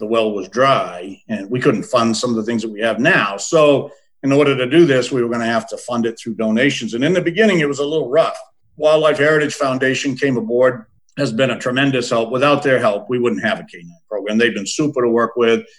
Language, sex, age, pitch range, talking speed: English, male, 50-69, 115-150 Hz, 250 wpm